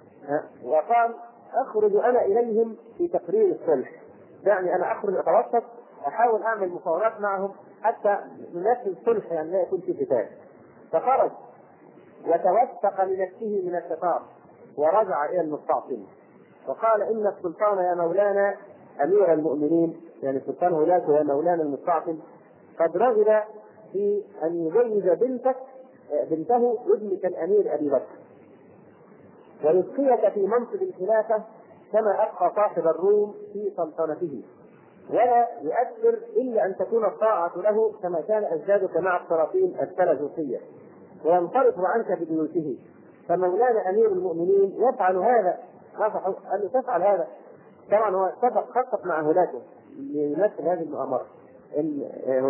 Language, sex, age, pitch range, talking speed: Arabic, male, 50-69, 170-240 Hz, 115 wpm